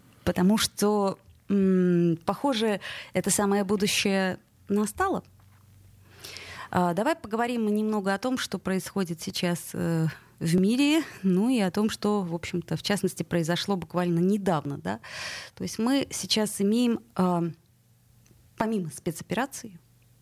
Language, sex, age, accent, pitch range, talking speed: Russian, female, 20-39, native, 165-210 Hz, 115 wpm